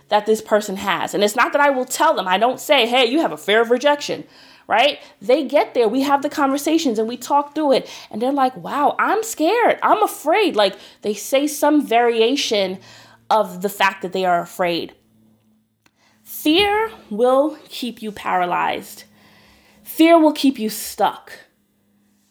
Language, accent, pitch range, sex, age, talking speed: English, American, 205-270 Hz, female, 30-49, 175 wpm